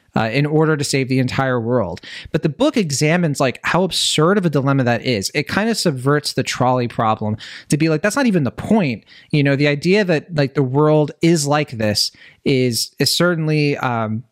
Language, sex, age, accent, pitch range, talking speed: English, male, 30-49, American, 130-170 Hz, 205 wpm